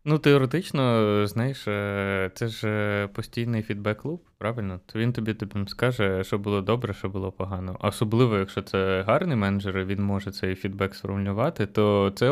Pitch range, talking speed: 100-115 Hz, 155 wpm